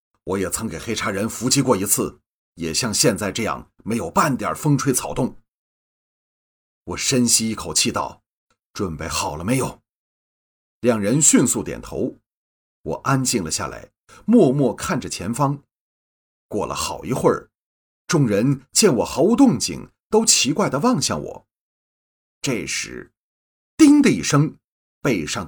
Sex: male